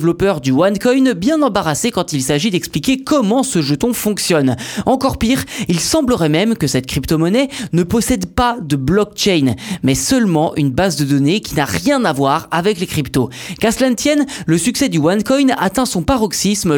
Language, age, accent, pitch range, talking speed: French, 20-39, French, 155-230 Hz, 180 wpm